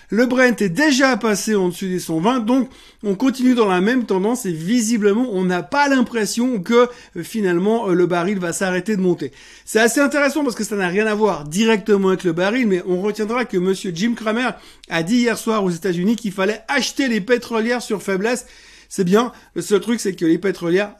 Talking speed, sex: 205 wpm, male